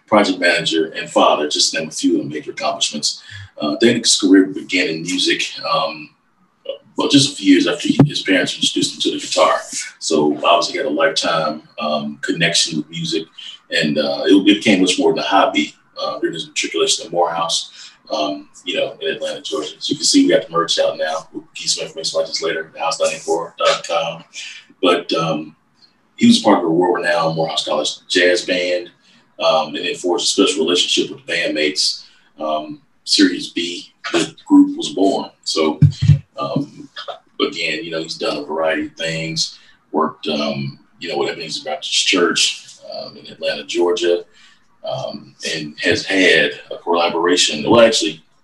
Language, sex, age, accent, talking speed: English, male, 30-49, American, 180 wpm